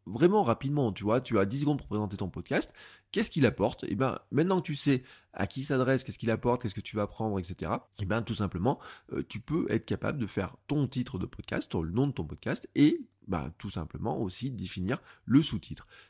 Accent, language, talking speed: French, French, 240 wpm